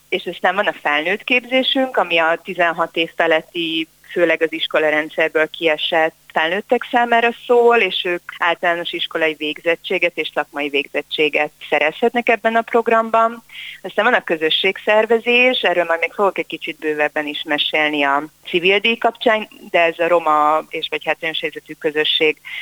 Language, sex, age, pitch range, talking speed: Hungarian, female, 30-49, 155-210 Hz, 145 wpm